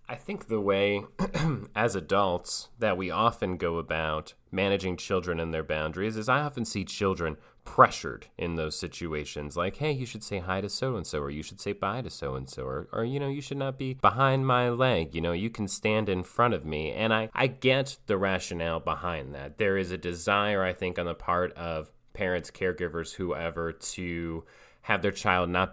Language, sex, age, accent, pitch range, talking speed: English, male, 30-49, American, 85-110 Hz, 200 wpm